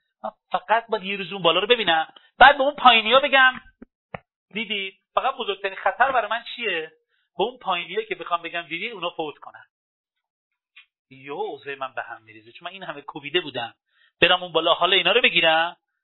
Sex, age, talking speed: male, 40-59, 175 wpm